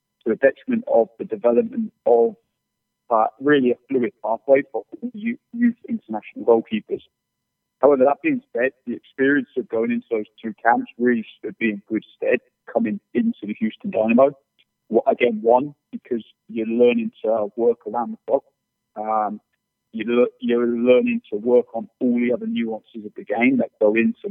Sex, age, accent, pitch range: male, 40-59, British, 115-150 Hz